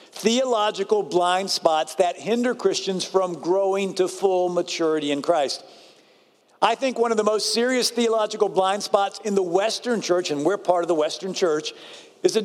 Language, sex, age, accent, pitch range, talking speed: English, male, 50-69, American, 170-215 Hz, 175 wpm